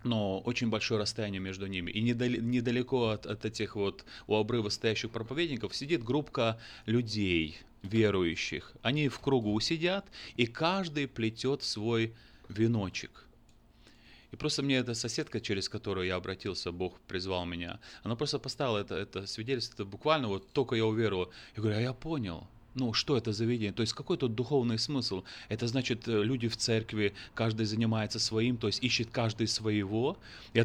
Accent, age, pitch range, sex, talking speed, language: native, 30-49, 105-125 Hz, male, 160 wpm, Russian